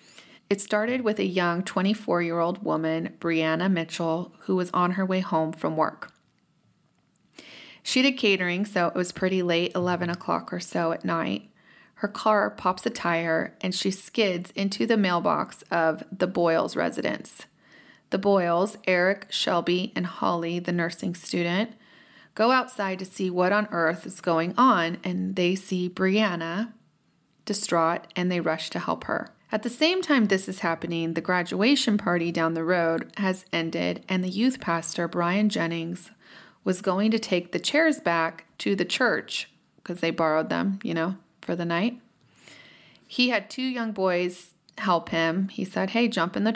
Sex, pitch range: female, 170-210 Hz